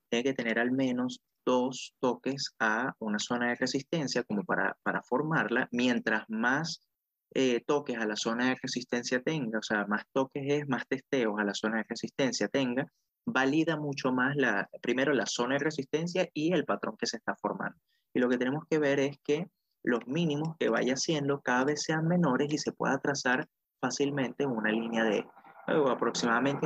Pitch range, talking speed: 120-150 Hz, 185 wpm